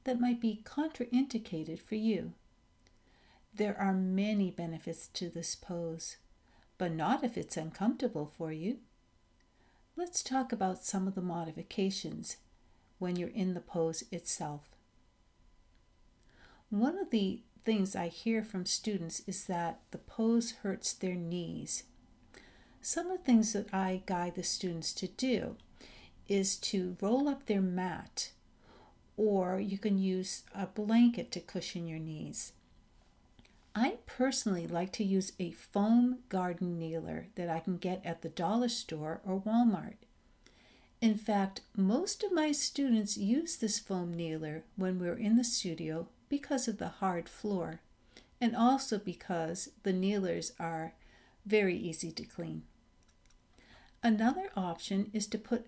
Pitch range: 175-225 Hz